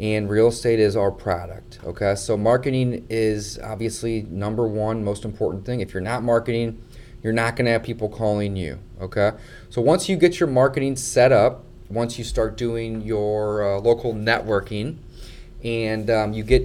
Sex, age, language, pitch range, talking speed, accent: male, 30-49, English, 105-120 Hz, 175 wpm, American